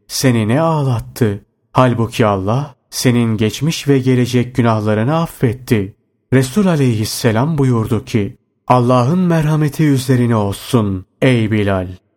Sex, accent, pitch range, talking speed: male, native, 110-140 Hz, 105 wpm